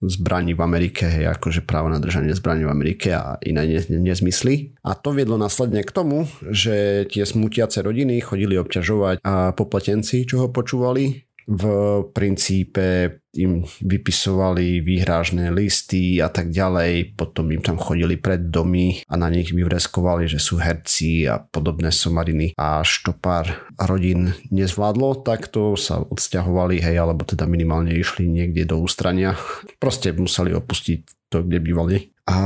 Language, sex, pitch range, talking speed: Slovak, male, 85-110 Hz, 150 wpm